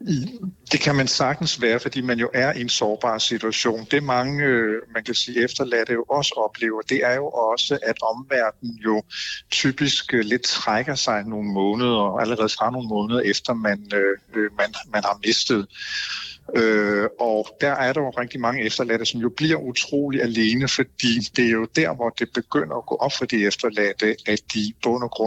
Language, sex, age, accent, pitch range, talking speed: Danish, male, 50-69, native, 105-125 Hz, 185 wpm